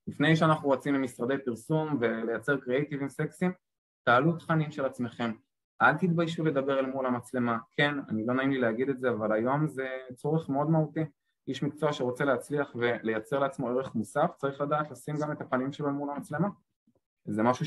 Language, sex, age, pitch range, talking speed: Hebrew, male, 20-39, 120-165 Hz, 175 wpm